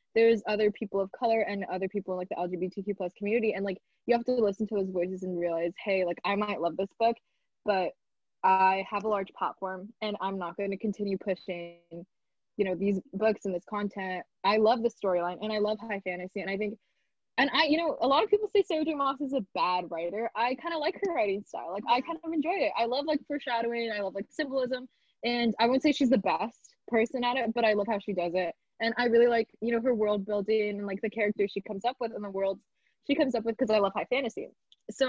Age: 10-29